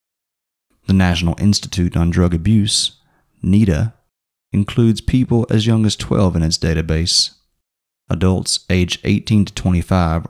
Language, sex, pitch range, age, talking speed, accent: English, male, 85-105 Hz, 30-49, 120 wpm, American